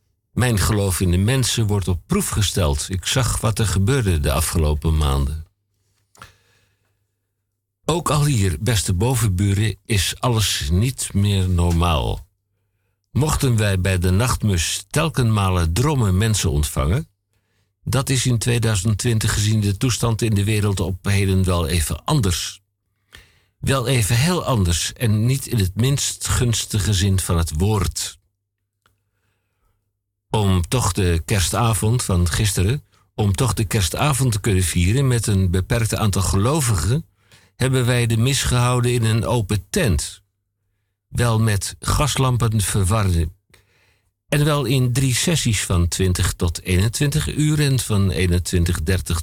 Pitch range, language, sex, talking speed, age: 95-115 Hz, Dutch, male, 135 wpm, 60-79